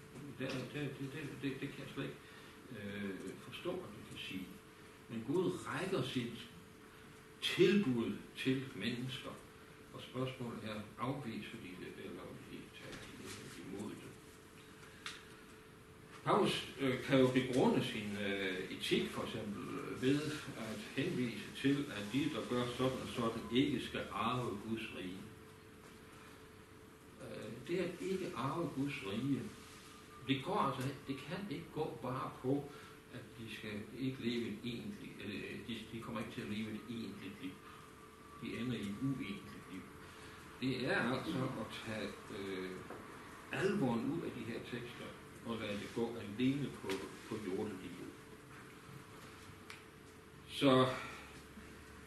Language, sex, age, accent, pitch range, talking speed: Danish, male, 60-79, native, 110-140 Hz, 140 wpm